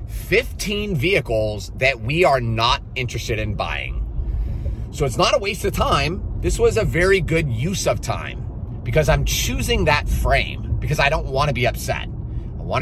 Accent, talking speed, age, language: American, 180 wpm, 30-49, English